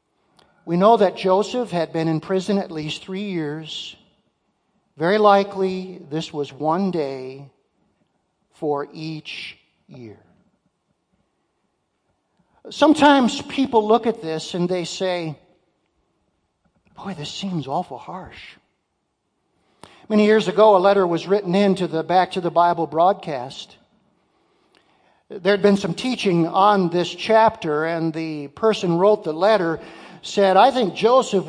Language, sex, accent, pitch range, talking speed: English, male, American, 165-210 Hz, 125 wpm